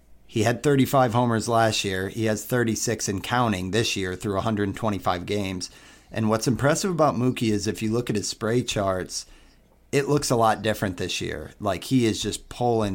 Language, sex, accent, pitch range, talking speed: English, male, American, 100-120 Hz, 190 wpm